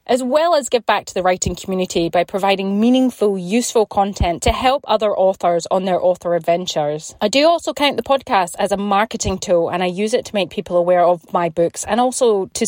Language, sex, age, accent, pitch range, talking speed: English, female, 30-49, British, 180-220 Hz, 220 wpm